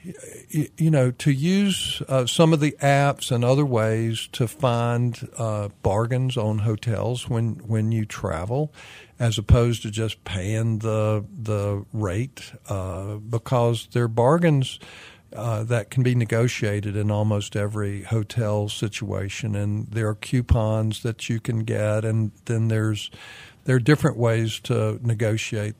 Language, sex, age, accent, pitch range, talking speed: English, male, 50-69, American, 110-135 Hz, 140 wpm